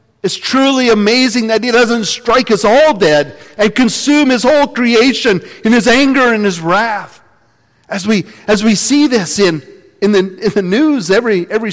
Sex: male